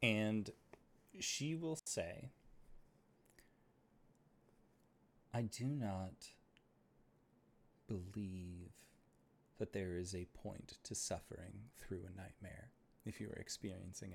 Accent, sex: American, male